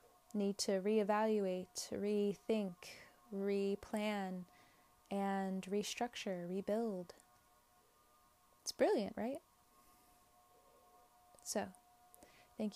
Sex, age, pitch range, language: female, 20-39, 175-200 Hz, English